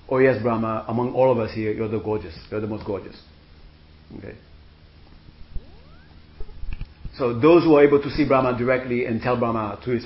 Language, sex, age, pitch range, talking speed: English, male, 40-59, 75-120 Hz, 180 wpm